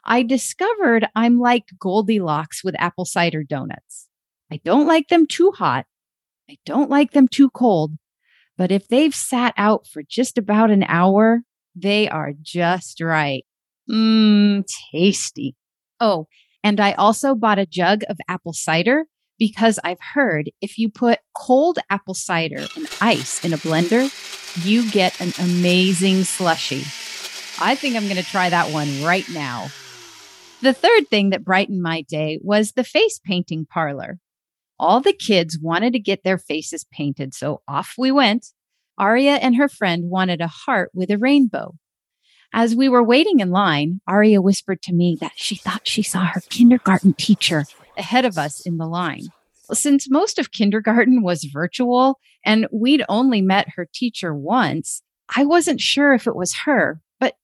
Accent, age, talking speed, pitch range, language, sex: American, 40-59, 165 wpm, 175-245 Hz, English, female